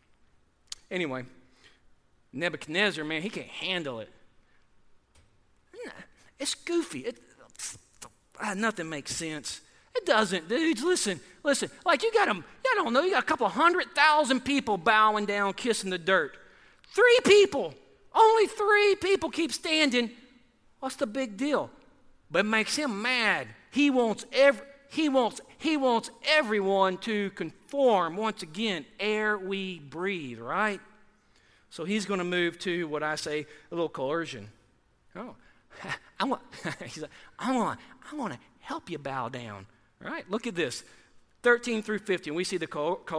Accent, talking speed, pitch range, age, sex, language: American, 145 wpm, 175-270 Hz, 40-59, male, English